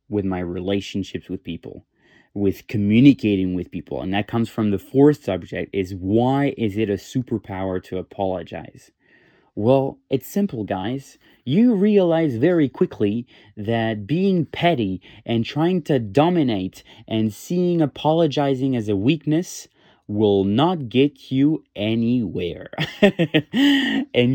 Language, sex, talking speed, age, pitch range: English, male, 125 wpm, 20-39, 100-135 Hz